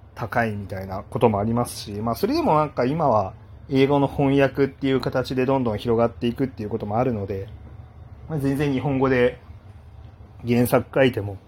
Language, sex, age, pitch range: Japanese, male, 30-49, 105-130 Hz